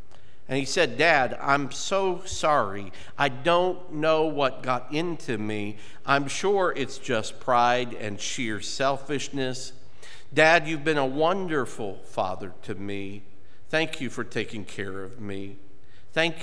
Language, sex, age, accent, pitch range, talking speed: English, male, 50-69, American, 100-140 Hz, 140 wpm